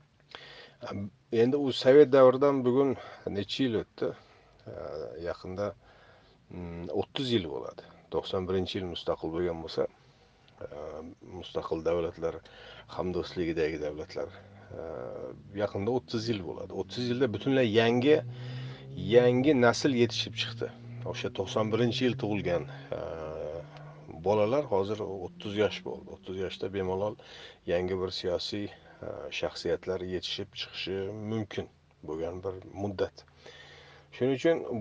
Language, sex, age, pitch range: Russian, male, 40-59, 100-130 Hz